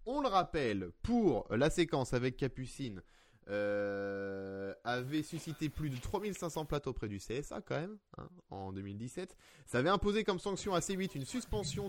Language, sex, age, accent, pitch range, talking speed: French, male, 20-39, French, 115-170 Hz, 160 wpm